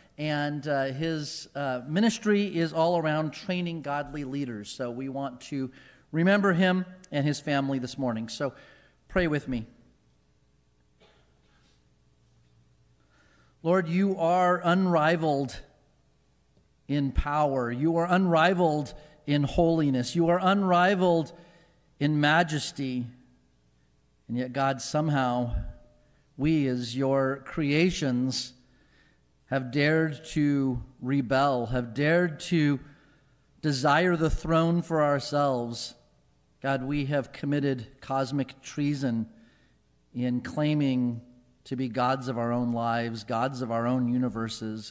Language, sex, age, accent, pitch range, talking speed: English, male, 40-59, American, 125-155 Hz, 110 wpm